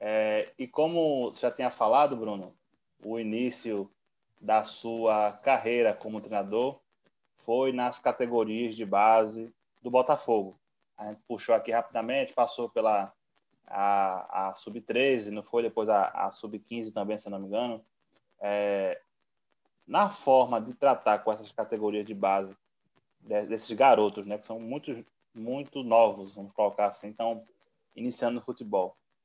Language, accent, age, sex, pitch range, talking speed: Portuguese, Brazilian, 20-39, male, 110-125 Hz, 140 wpm